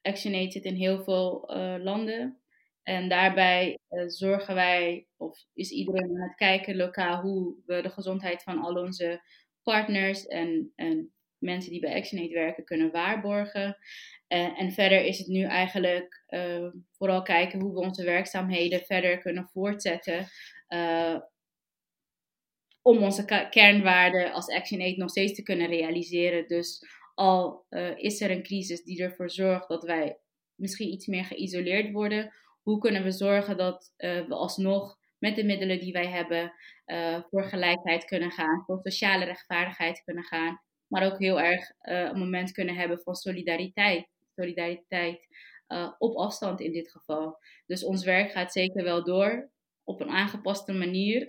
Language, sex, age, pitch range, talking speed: Dutch, female, 20-39, 175-195 Hz, 160 wpm